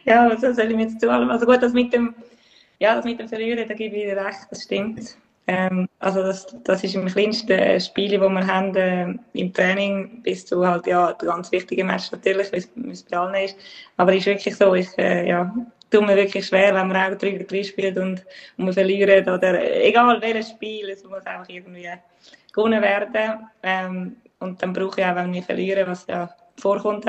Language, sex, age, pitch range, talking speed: German, female, 20-39, 190-225 Hz, 200 wpm